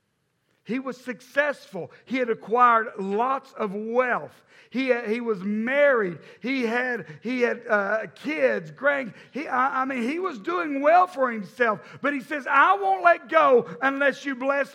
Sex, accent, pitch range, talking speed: male, American, 180-275 Hz, 165 wpm